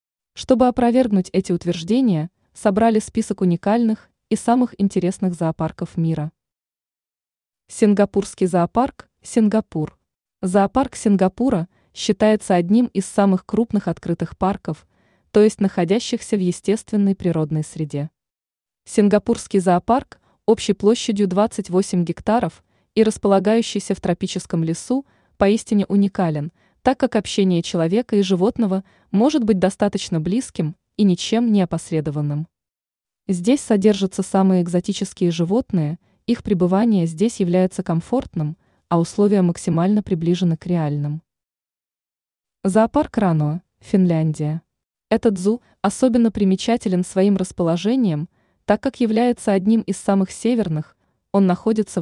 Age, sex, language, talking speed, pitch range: 20-39, female, Russian, 105 wpm, 175-220 Hz